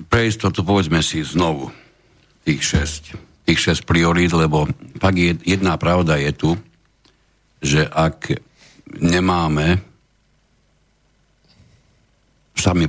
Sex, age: male, 60-79